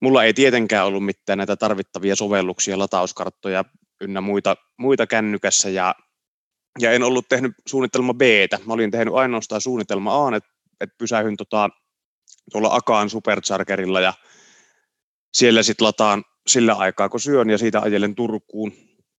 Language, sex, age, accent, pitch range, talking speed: Finnish, male, 30-49, native, 100-115 Hz, 140 wpm